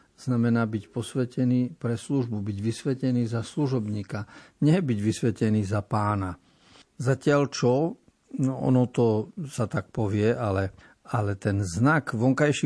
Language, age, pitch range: Slovak, 50-69, 105-130 Hz